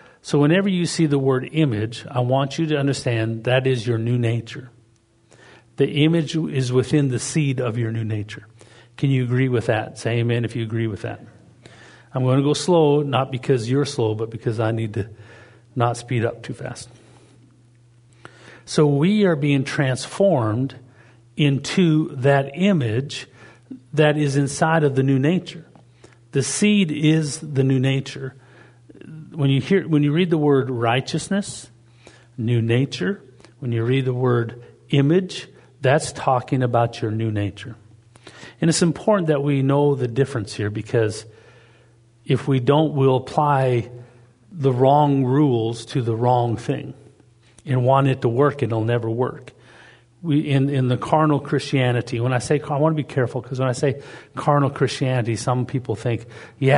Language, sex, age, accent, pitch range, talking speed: English, male, 50-69, American, 120-145 Hz, 165 wpm